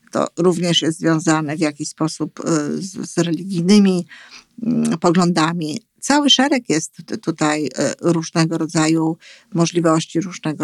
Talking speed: 115 wpm